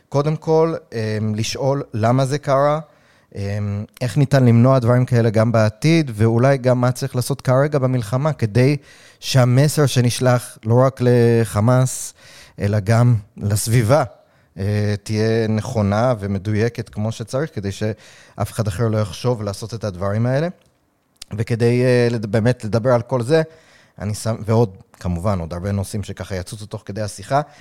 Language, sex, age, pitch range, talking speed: Hebrew, male, 30-49, 105-125 Hz, 135 wpm